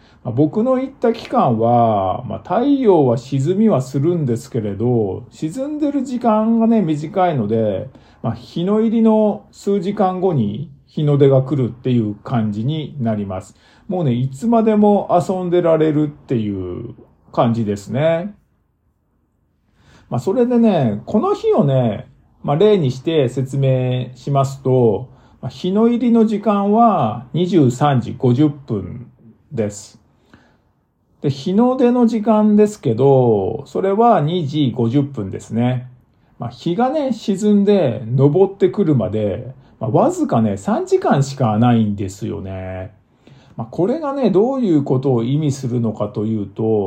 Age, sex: 50-69, male